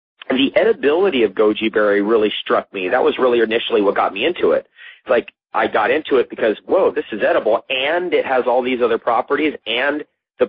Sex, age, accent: male, 30-49, American